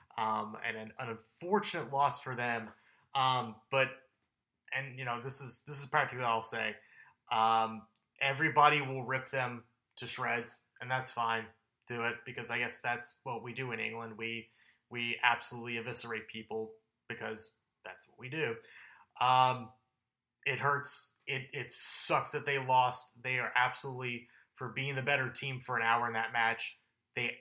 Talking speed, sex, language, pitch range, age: 165 wpm, male, English, 115-130 Hz, 20-39